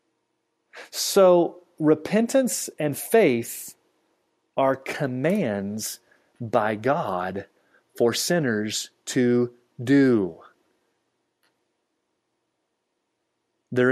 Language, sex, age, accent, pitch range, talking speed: English, male, 30-49, American, 135-185 Hz, 55 wpm